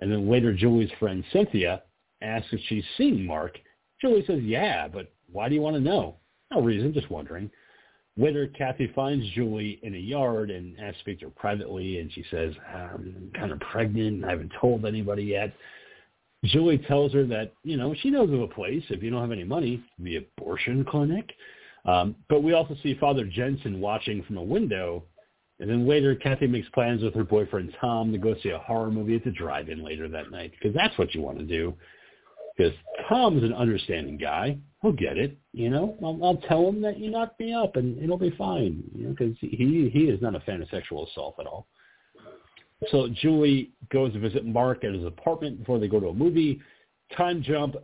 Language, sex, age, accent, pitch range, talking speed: English, male, 50-69, American, 105-145 Hz, 210 wpm